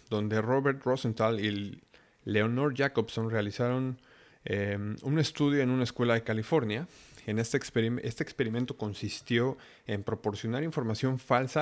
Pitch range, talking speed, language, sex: 110-140 Hz, 120 wpm, Spanish, male